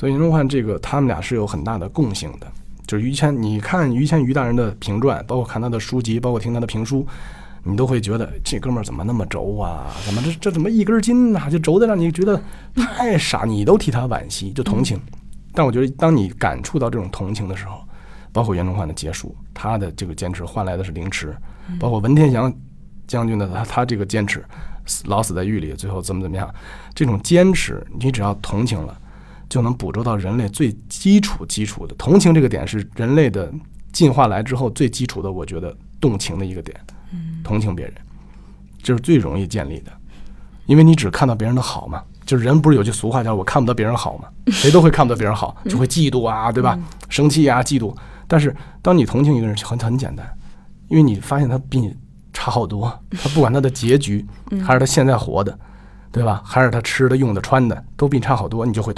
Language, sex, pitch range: Chinese, male, 100-140 Hz